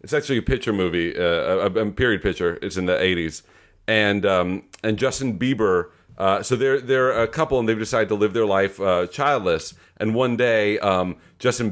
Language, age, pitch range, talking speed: English, 40-59, 95-110 Hz, 200 wpm